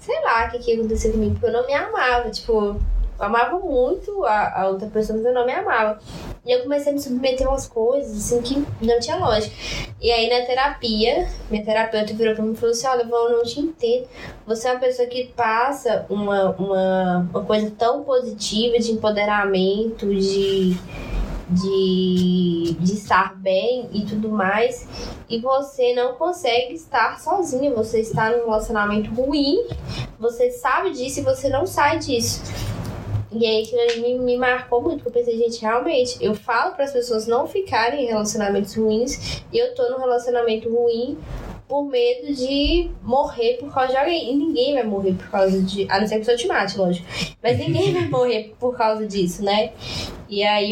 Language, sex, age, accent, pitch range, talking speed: Portuguese, female, 10-29, Brazilian, 215-265 Hz, 190 wpm